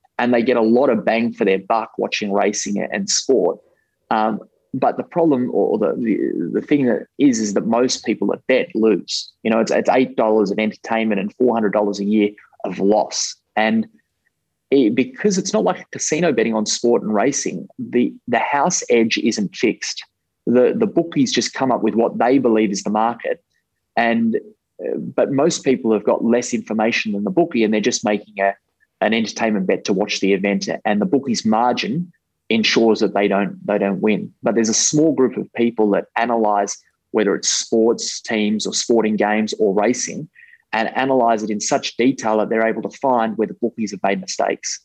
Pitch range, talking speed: 105-125 Hz, 195 wpm